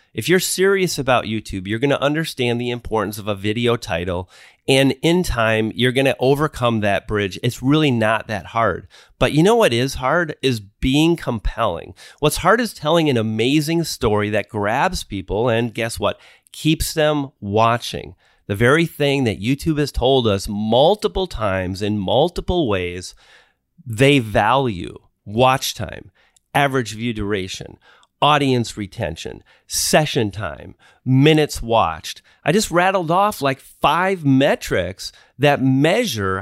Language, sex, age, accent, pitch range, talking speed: English, male, 30-49, American, 110-150 Hz, 145 wpm